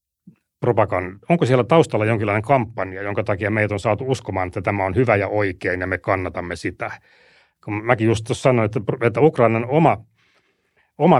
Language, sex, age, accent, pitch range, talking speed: Finnish, male, 30-49, native, 105-125 Hz, 165 wpm